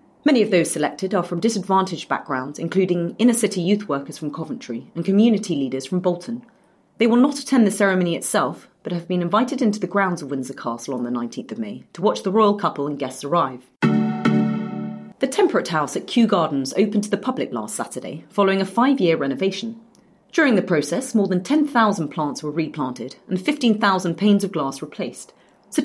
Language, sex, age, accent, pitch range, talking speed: English, female, 30-49, British, 150-210 Hz, 190 wpm